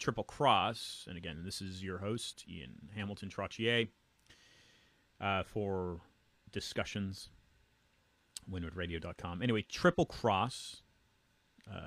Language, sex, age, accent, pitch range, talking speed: English, male, 30-49, American, 95-120 Hz, 90 wpm